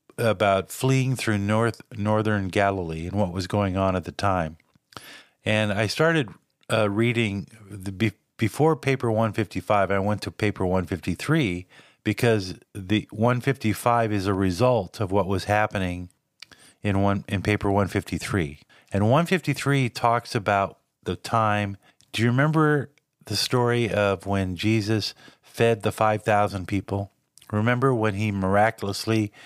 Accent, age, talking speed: American, 50-69, 135 wpm